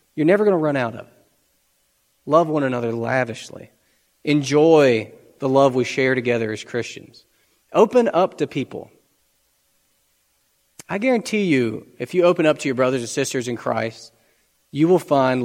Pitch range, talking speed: 125-180 Hz, 155 wpm